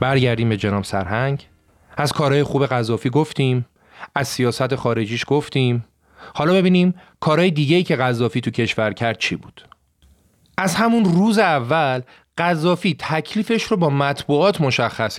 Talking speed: 140 wpm